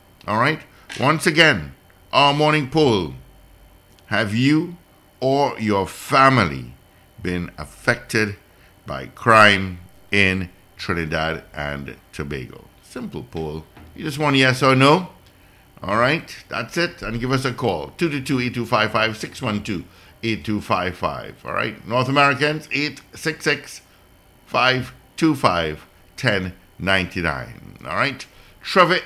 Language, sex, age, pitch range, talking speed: English, male, 60-79, 90-130 Hz, 90 wpm